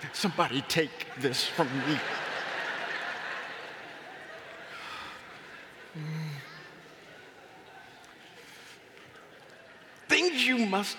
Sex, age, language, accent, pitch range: male, 50-69, English, American, 205-320 Hz